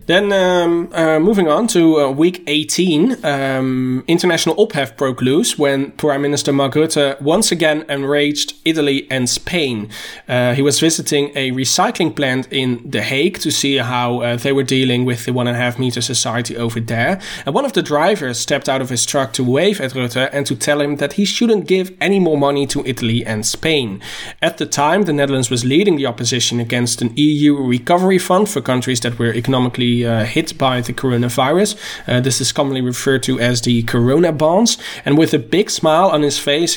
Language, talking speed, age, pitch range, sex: English, 200 wpm, 20-39, 125-155 Hz, male